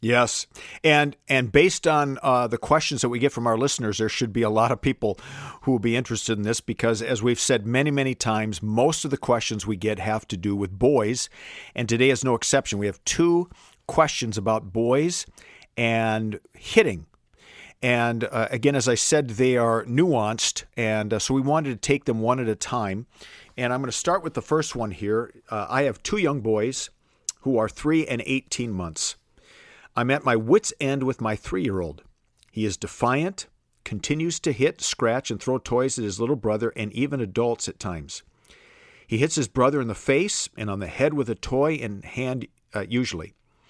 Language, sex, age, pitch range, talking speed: English, male, 50-69, 110-135 Hz, 200 wpm